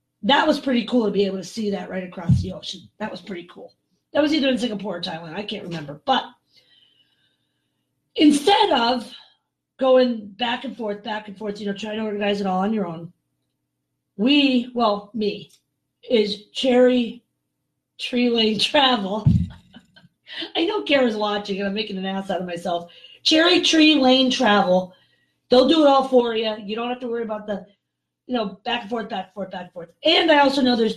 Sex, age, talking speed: female, 40-59, 195 wpm